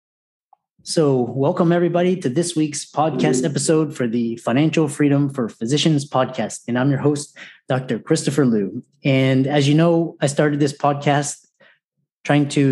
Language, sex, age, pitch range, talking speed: English, male, 30-49, 120-145 Hz, 150 wpm